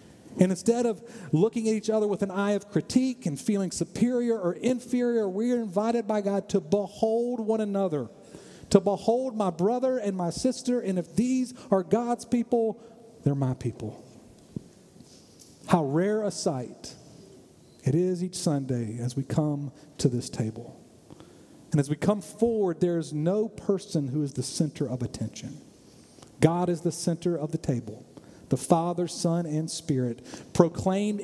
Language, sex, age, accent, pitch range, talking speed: English, male, 40-59, American, 155-215 Hz, 160 wpm